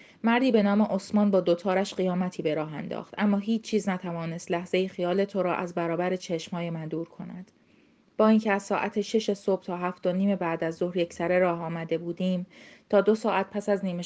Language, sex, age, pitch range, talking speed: Persian, female, 30-49, 175-210 Hz, 205 wpm